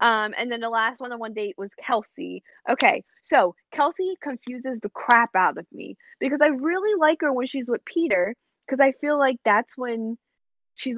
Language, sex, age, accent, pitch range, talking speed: English, female, 10-29, American, 200-275 Hz, 195 wpm